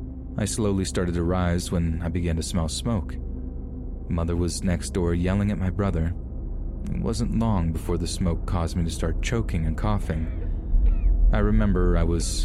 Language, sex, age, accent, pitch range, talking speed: English, male, 30-49, American, 80-95 Hz, 175 wpm